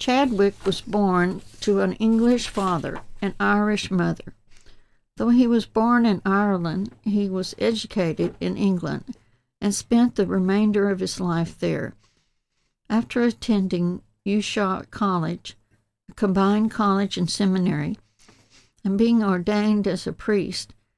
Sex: female